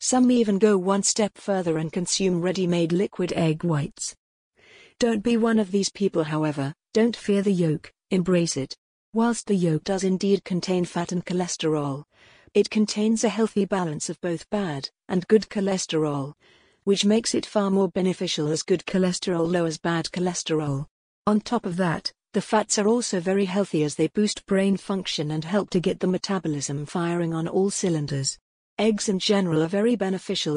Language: English